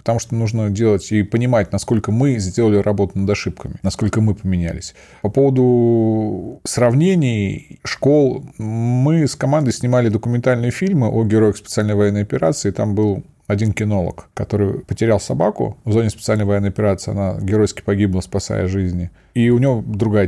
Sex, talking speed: male, 150 wpm